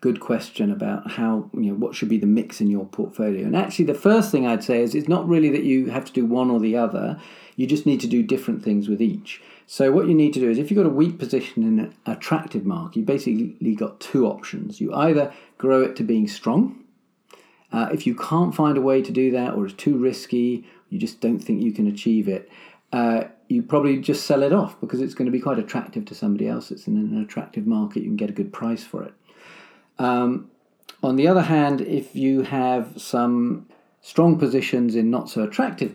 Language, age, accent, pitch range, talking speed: English, 40-59, British, 115-195 Hz, 230 wpm